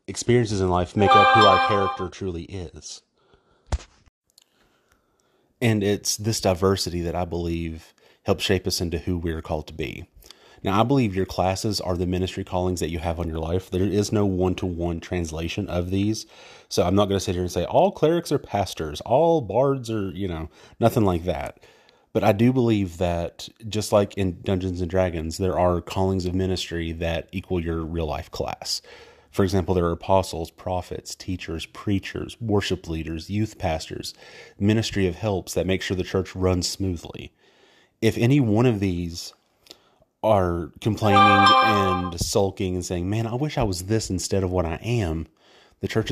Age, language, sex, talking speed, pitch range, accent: 30-49, English, male, 180 wpm, 90-105 Hz, American